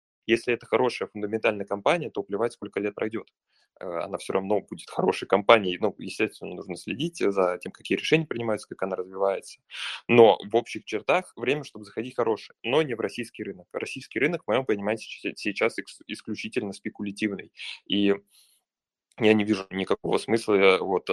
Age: 20-39